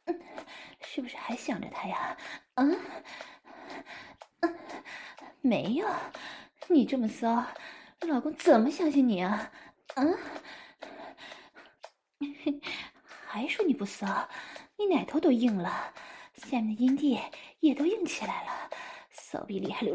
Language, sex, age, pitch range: English, female, 20-39, 240-320 Hz